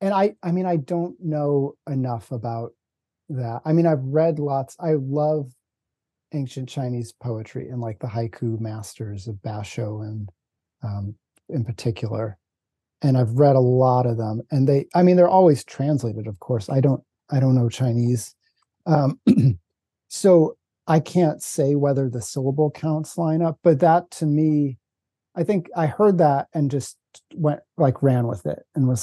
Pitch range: 120-160 Hz